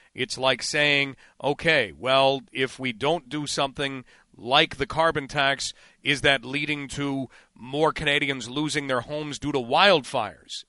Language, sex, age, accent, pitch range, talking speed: English, male, 40-59, American, 125-150 Hz, 145 wpm